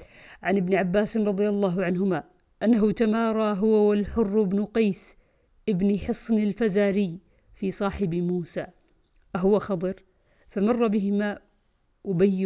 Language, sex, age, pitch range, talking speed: Arabic, female, 50-69, 180-210 Hz, 110 wpm